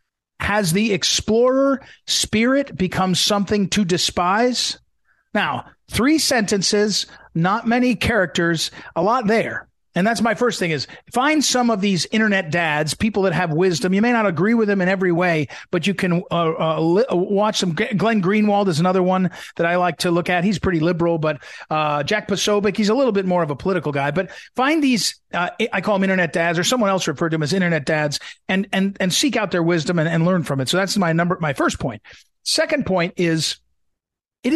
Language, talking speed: English, 205 wpm